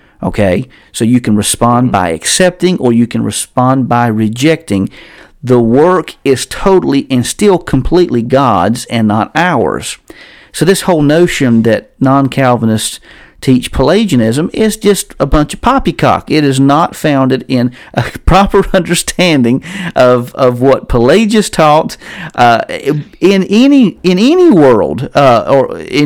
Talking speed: 140 wpm